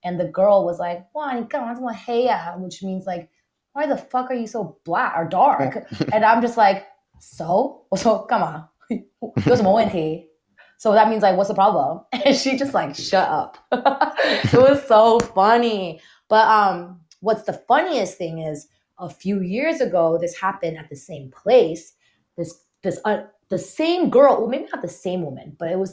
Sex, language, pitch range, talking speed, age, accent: female, English, 165-220 Hz, 170 wpm, 20-39, American